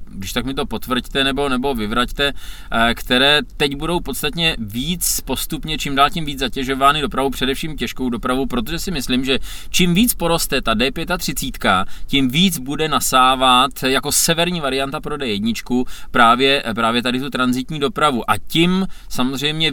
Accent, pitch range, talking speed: native, 115-140 Hz, 150 wpm